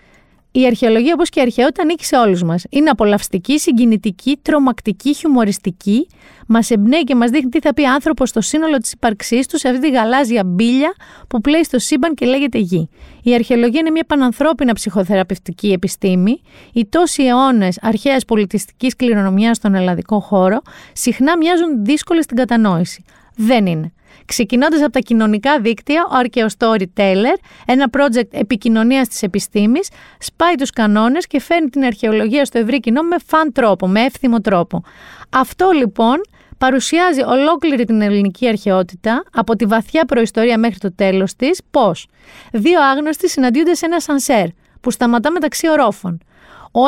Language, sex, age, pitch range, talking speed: Greek, female, 30-49, 215-290 Hz, 155 wpm